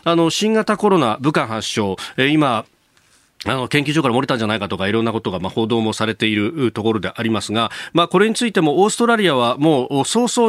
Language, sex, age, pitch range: Japanese, male, 40-59, 110-165 Hz